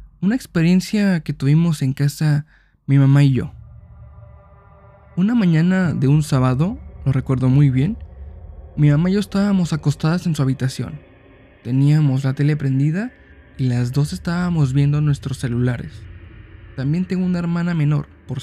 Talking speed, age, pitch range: 145 wpm, 20-39, 125-165 Hz